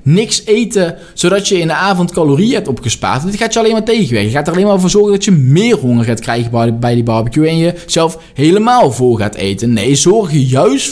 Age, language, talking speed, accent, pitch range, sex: 20-39, Dutch, 240 wpm, Dutch, 125-180 Hz, male